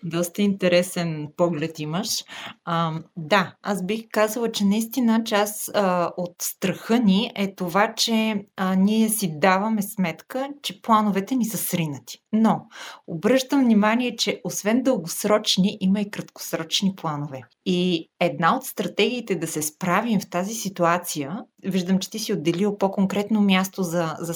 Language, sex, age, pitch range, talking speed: Bulgarian, female, 30-49, 175-225 Hz, 140 wpm